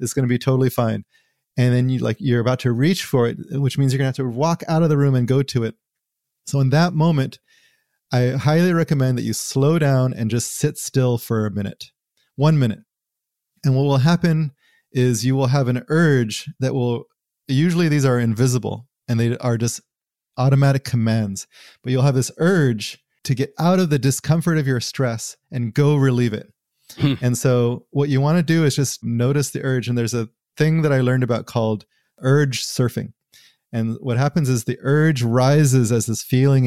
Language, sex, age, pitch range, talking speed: English, male, 30-49, 120-155 Hz, 205 wpm